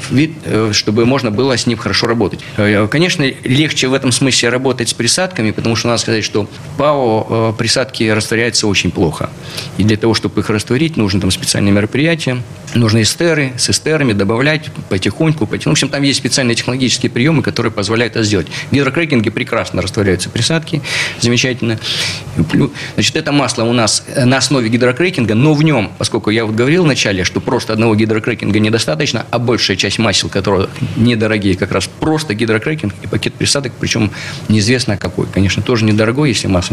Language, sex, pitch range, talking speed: Russian, male, 105-140 Hz, 170 wpm